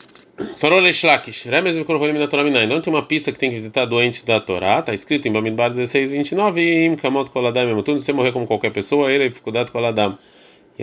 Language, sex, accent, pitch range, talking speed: Portuguese, male, Brazilian, 110-150 Hz, 210 wpm